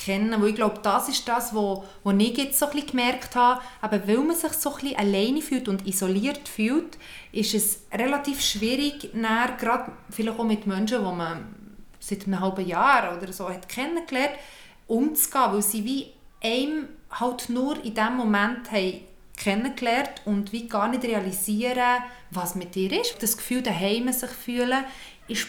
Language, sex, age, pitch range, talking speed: German, female, 30-49, 200-245 Hz, 170 wpm